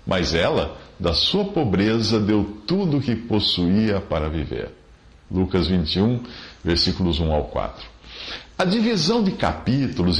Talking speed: 130 wpm